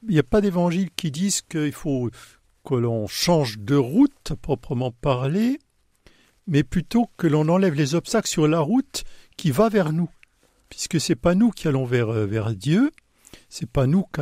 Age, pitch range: 60-79, 120-185 Hz